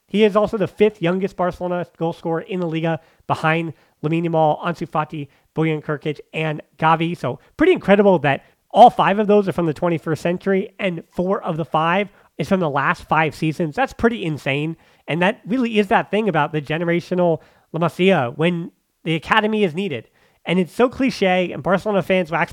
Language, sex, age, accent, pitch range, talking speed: English, male, 30-49, American, 160-195 Hz, 190 wpm